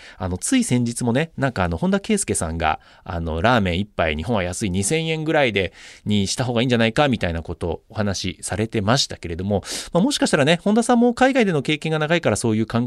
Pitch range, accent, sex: 95-160 Hz, native, male